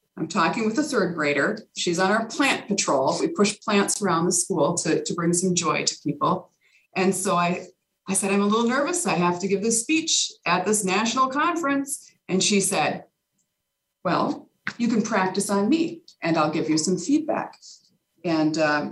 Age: 40-59